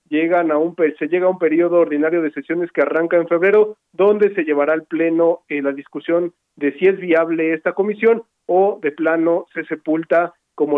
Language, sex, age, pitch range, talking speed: Spanish, male, 40-59, 145-175 Hz, 195 wpm